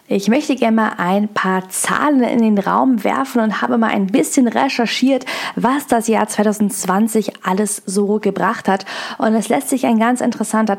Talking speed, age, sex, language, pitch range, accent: 180 wpm, 10-29, female, German, 200-235 Hz, German